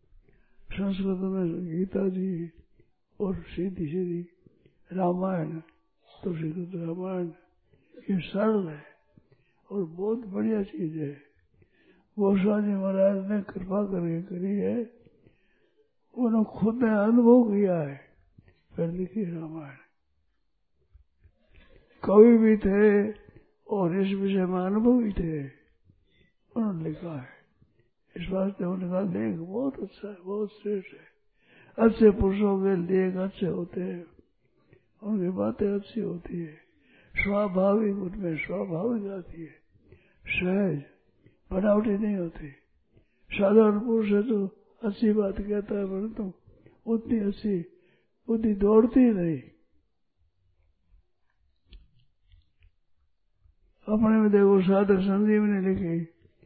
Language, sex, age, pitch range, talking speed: Hindi, male, 60-79, 160-205 Hz, 105 wpm